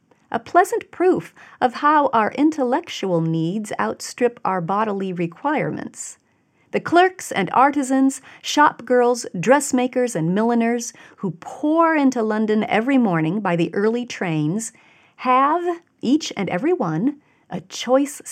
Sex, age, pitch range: female, 40-59, 170-255 Hz